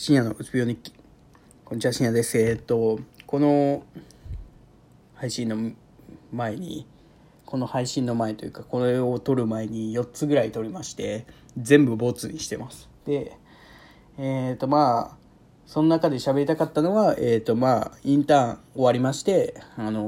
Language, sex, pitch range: Japanese, male, 115-150 Hz